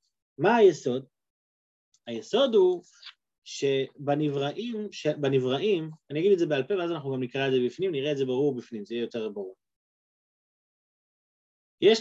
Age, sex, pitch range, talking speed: 30-49, male, 125-195 Hz, 140 wpm